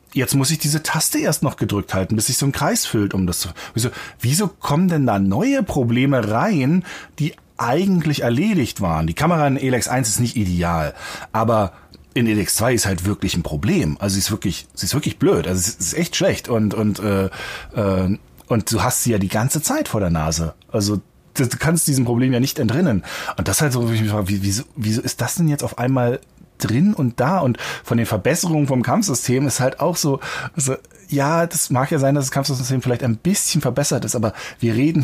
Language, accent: German, German